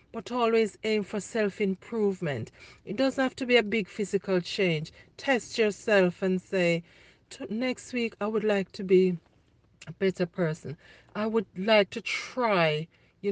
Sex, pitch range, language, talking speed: female, 175-215 Hz, English, 155 wpm